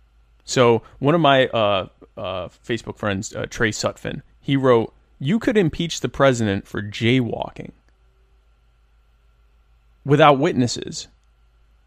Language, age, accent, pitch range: English, 30-49, American, 105-150 Hz